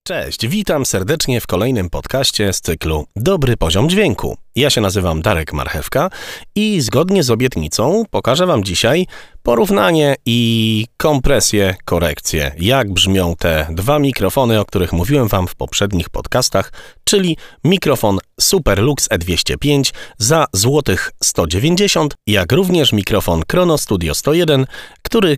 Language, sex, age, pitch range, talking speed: Polish, male, 30-49, 95-150 Hz, 125 wpm